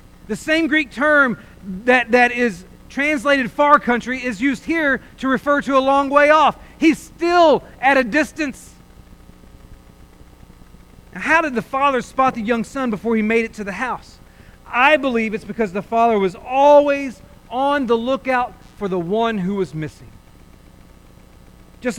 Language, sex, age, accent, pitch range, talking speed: English, male, 40-59, American, 195-265 Hz, 160 wpm